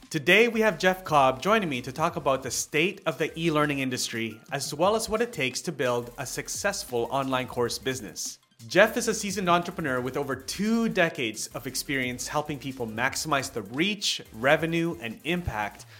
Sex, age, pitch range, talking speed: male, 30-49, 115-160 Hz, 180 wpm